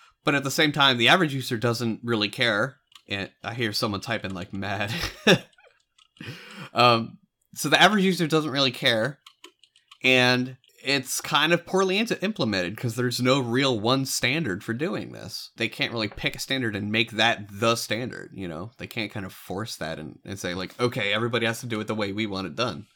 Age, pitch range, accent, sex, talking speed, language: 30-49, 105-135 Hz, American, male, 200 wpm, English